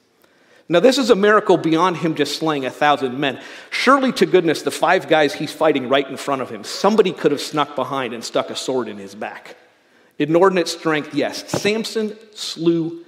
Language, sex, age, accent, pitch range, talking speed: English, male, 40-59, American, 135-175 Hz, 195 wpm